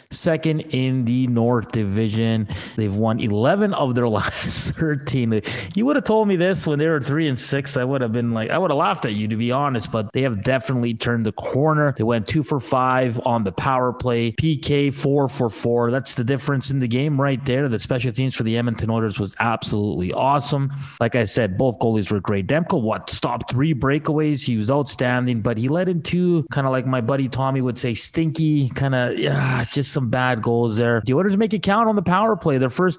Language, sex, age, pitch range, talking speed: English, male, 30-49, 120-145 Hz, 225 wpm